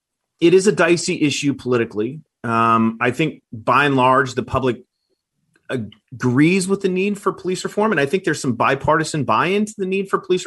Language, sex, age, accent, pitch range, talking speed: English, male, 30-49, American, 115-145 Hz, 190 wpm